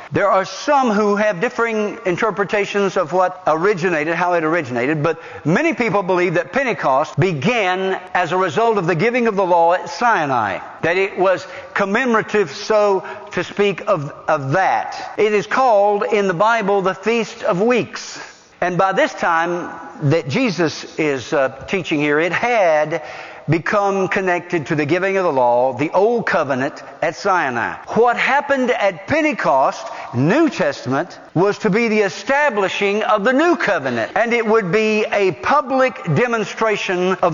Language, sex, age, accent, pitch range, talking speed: English, male, 60-79, American, 175-230 Hz, 160 wpm